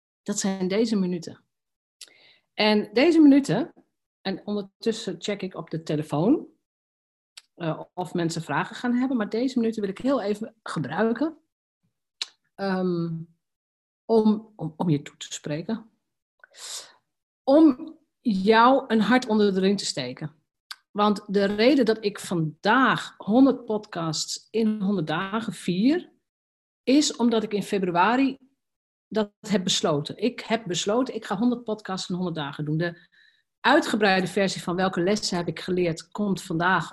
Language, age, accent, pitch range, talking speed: Dutch, 50-69, Dutch, 170-230 Hz, 140 wpm